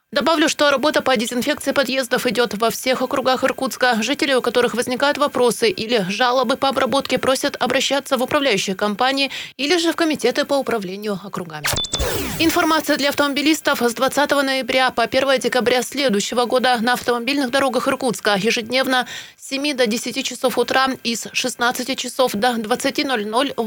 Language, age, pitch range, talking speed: Russian, 20-39, 235-275 Hz, 150 wpm